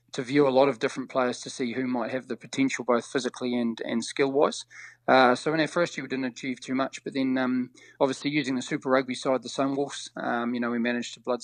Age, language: 20-39, English